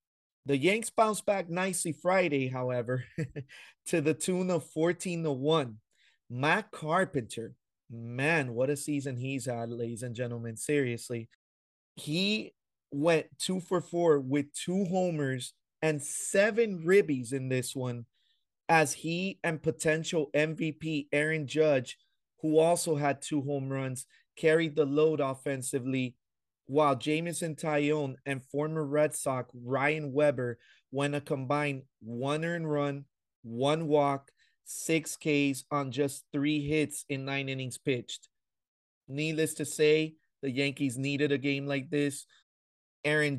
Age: 30-49